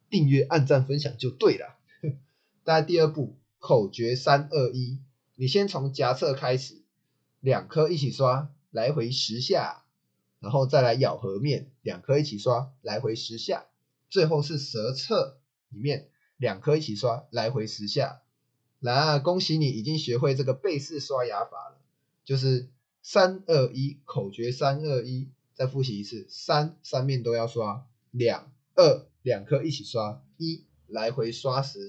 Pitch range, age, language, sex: 120-145 Hz, 20-39, Chinese, male